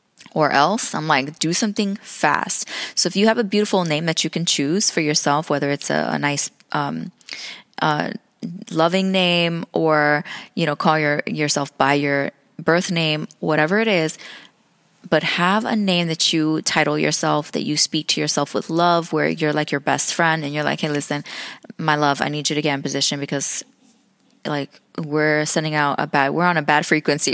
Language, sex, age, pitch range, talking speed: English, female, 20-39, 150-190 Hz, 195 wpm